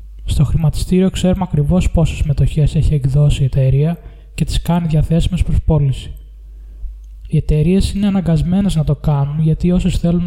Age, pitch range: 20-39, 140-175 Hz